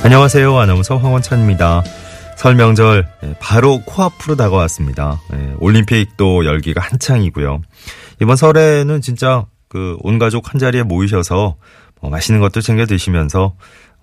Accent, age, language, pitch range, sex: native, 30-49, Korean, 85-130 Hz, male